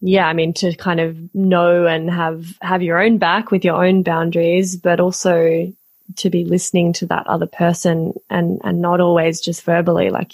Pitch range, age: 175-205 Hz, 20-39